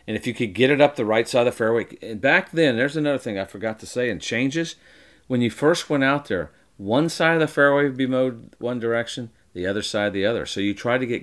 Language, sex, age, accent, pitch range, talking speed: English, male, 40-59, American, 90-120 Hz, 265 wpm